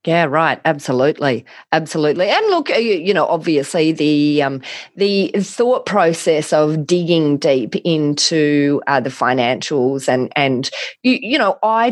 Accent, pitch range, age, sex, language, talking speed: Australian, 150-190 Hz, 30-49, female, English, 135 wpm